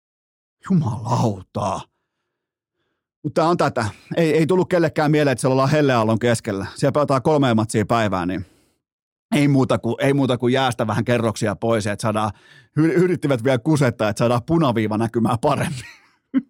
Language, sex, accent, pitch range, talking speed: Finnish, male, native, 115-155 Hz, 145 wpm